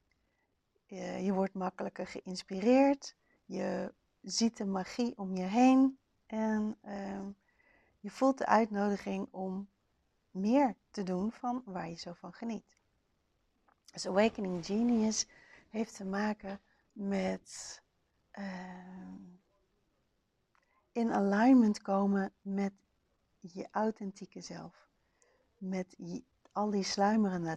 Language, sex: Dutch, female